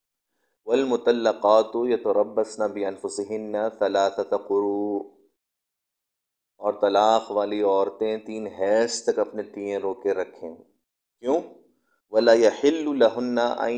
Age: 30-49